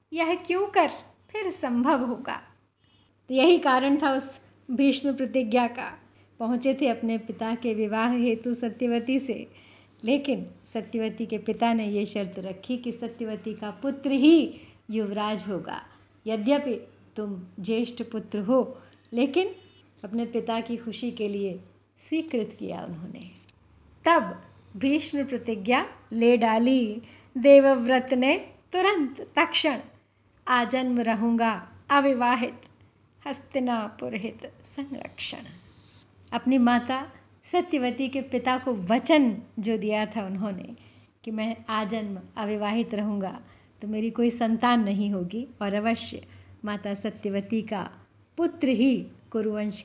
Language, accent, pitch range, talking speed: Hindi, native, 215-260 Hz, 120 wpm